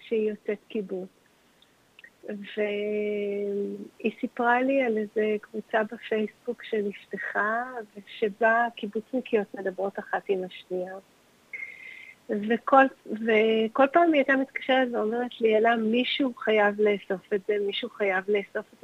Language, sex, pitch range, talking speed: Hebrew, female, 210-270 Hz, 110 wpm